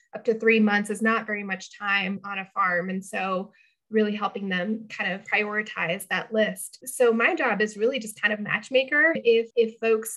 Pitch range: 200-230 Hz